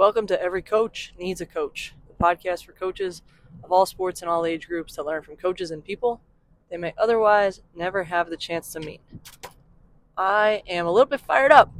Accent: American